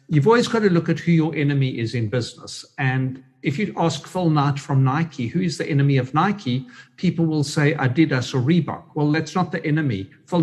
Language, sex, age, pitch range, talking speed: English, male, 60-79, 135-165 Hz, 220 wpm